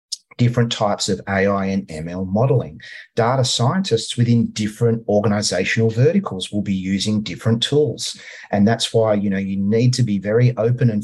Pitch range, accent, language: 95-120 Hz, Australian, English